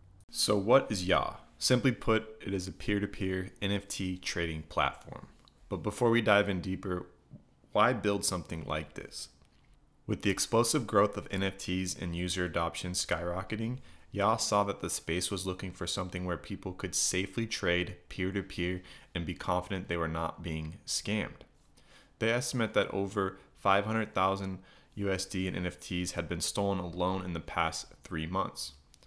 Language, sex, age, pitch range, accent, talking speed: English, male, 30-49, 85-100 Hz, American, 155 wpm